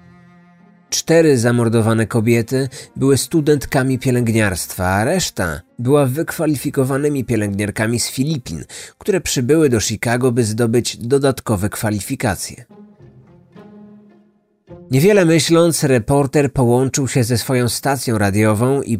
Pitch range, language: 115-160 Hz, Polish